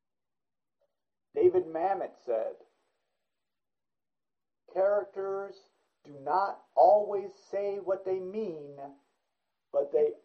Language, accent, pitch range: English, American, 145-205 Hz